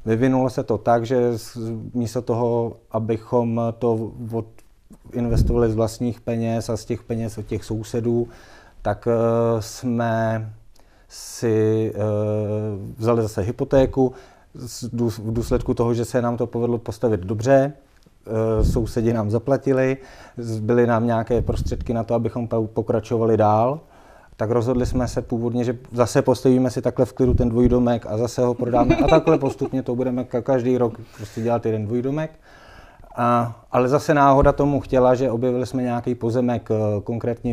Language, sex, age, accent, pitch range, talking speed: Czech, male, 40-59, native, 115-125 Hz, 145 wpm